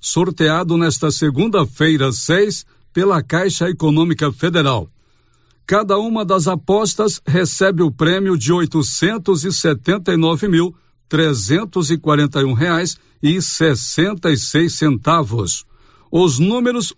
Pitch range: 145-185 Hz